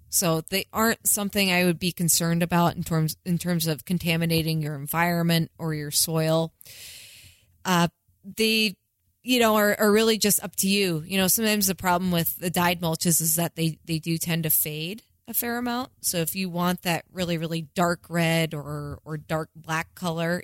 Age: 20-39